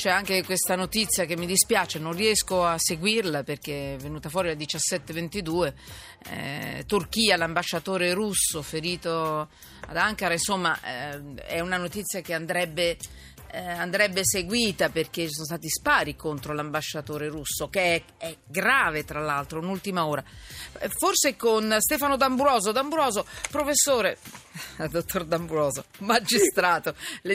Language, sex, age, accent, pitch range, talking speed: Italian, female, 40-59, native, 160-205 Hz, 130 wpm